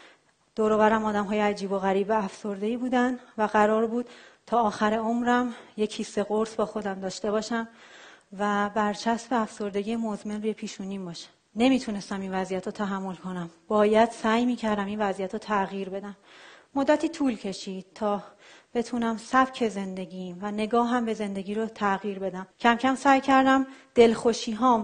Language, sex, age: Persian, female, 30-49